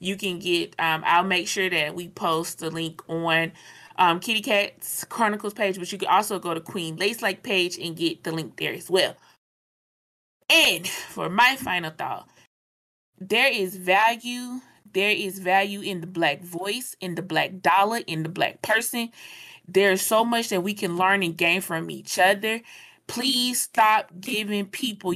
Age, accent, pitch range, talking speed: 20-39, American, 175-220 Hz, 180 wpm